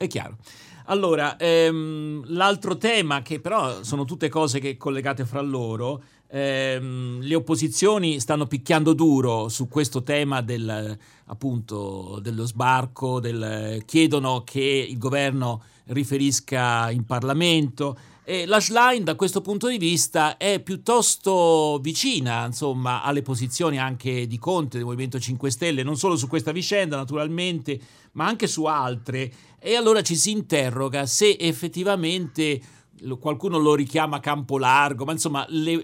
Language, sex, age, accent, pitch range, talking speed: Italian, male, 50-69, native, 130-180 Hz, 135 wpm